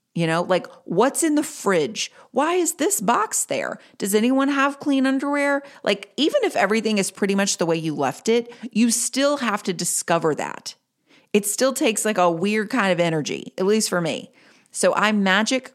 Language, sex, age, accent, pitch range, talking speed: English, female, 40-59, American, 165-235 Hz, 195 wpm